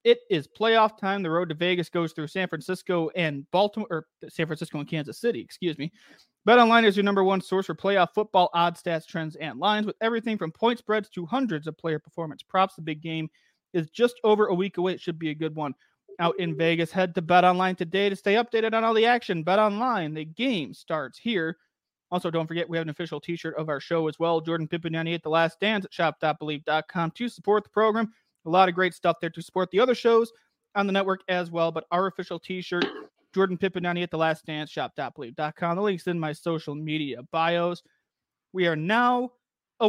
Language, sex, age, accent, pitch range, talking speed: English, male, 30-49, American, 165-205 Hz, 225 wpm